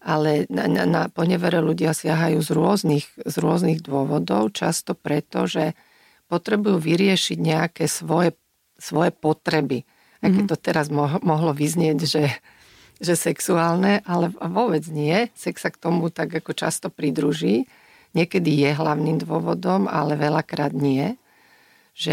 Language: Slovak